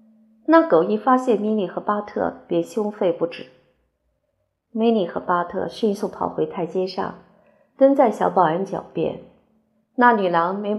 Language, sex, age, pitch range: Chinese, female, 50-69, 185-235 Hz